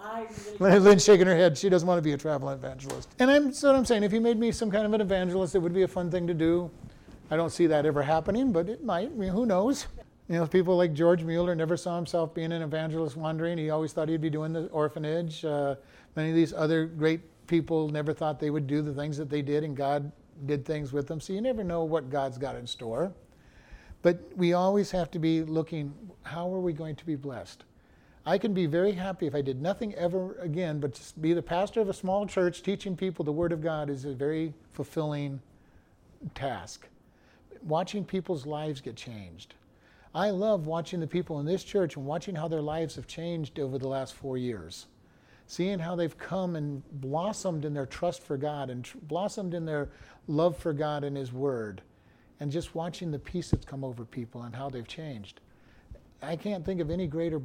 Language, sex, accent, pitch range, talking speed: English, male, American, 145-180 Hz, 220 wpm